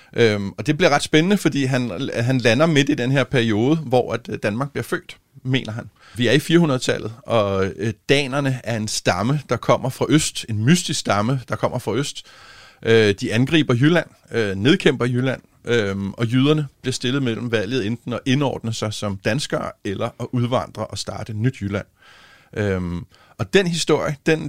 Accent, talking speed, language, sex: native, 165 wpm, Danish, male